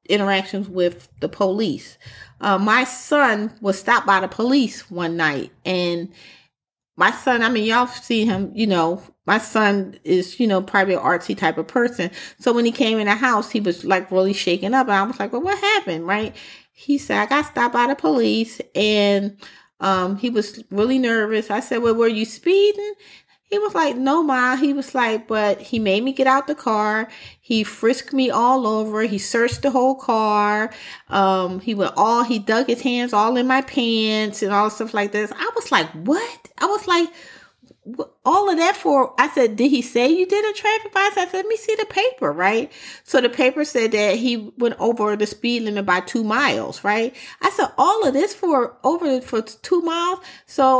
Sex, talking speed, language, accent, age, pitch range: female, 205 wpm, English, American, 30-49, 205-270 Hz